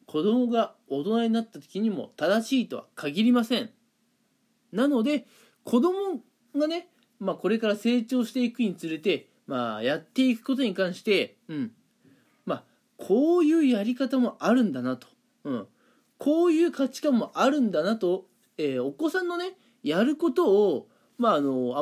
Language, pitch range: Japanese, 190-265 Hz